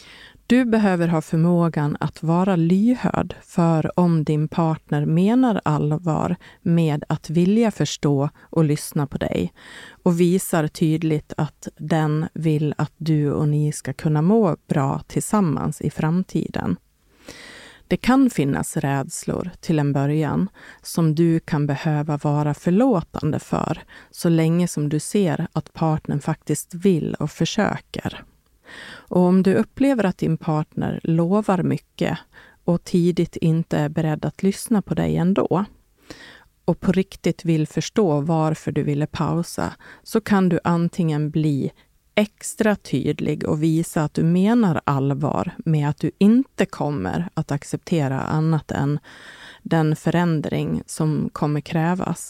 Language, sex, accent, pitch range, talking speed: Swedish, female, native, 150-185 Hz, 135 wpm